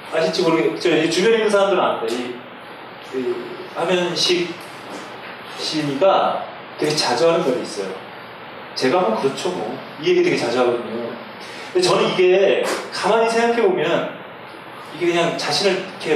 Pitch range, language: 150-230 Hz, Korean